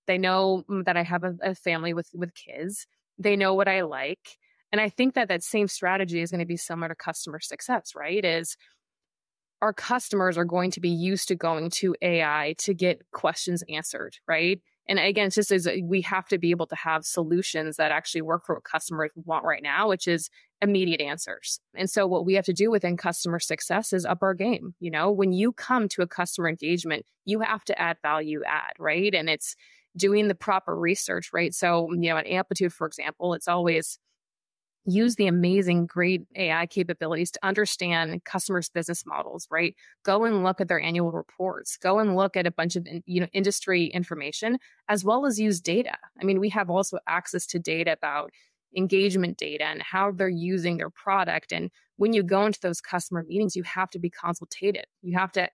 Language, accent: English, American